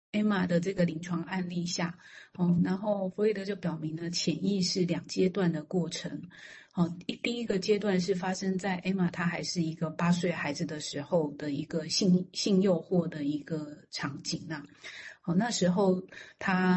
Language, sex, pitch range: Chinese, female, 160-185 Hz